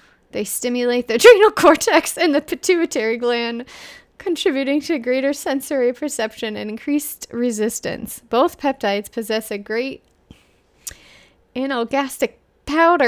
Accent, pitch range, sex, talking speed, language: American, 215-270 Hz, female, 105 wpm, English